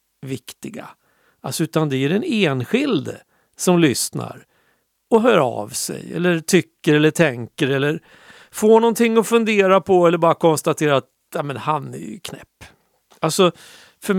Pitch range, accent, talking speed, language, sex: 140-190 Hz, native, 135 wpm, Swedish, male